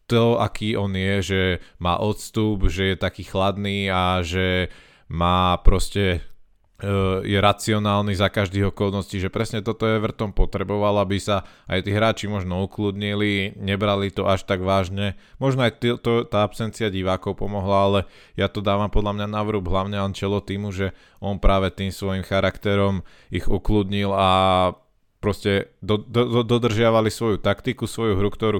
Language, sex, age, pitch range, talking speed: Slovak, male, 20-39, 95-110 Hz, 160 wpm